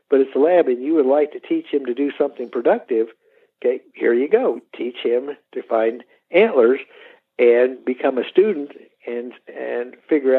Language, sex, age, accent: English, male, 60-79, American